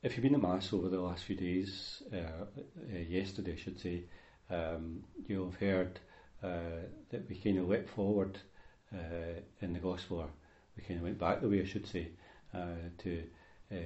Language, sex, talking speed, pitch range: English, male, 195 wpm, 85-95 Hz